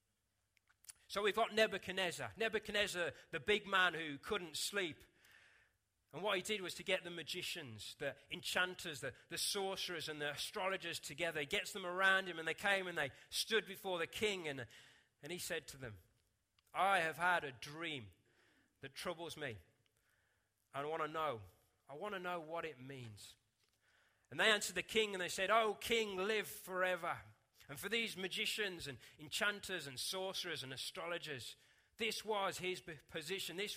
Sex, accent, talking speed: male, British, 170 wpm